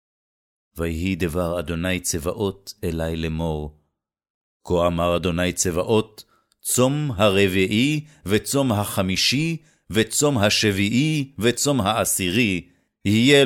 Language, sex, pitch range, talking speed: Hebrew, male, 90-120 Hz, 85 wpm